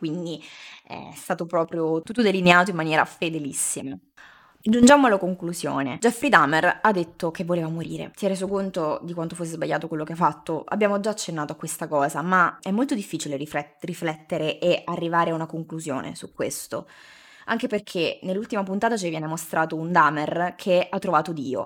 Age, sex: 20-39, female